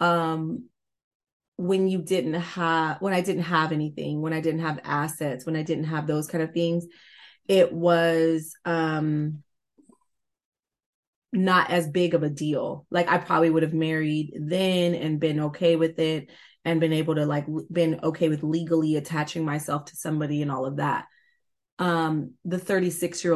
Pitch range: 155-175 Hz